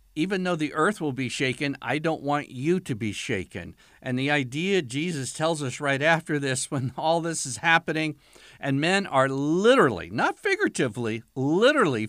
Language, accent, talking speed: English, American, 175 wpm